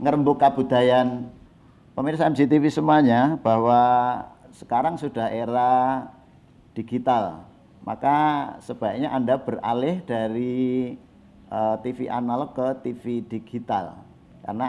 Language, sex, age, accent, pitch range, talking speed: Indonesian, male, 50-69, native, 105-130 Hz, 85 wpm